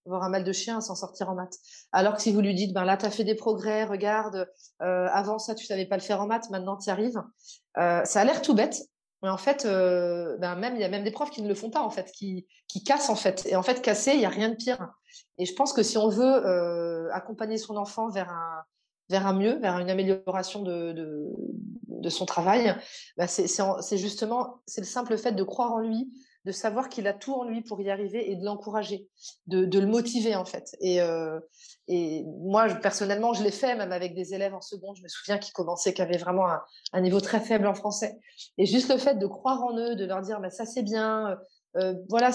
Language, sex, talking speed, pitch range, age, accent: French, female, 260 wpm, 190-230 Hz, 30-49, French